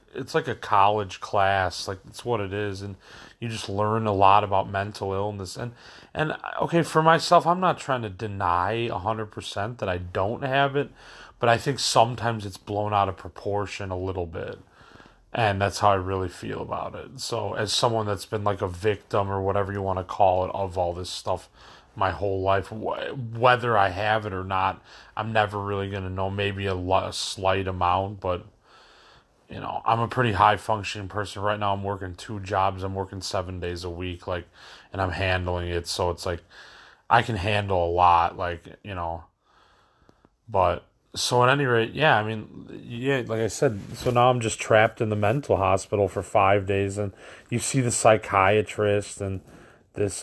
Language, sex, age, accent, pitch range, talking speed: English, male, 30-49, American, 95-120 Hz, 190 wpm